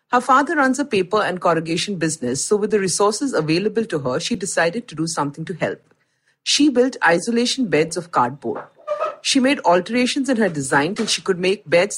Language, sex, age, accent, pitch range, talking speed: English, female, 50-69, Indian, 160-240 Hz, 195 wpm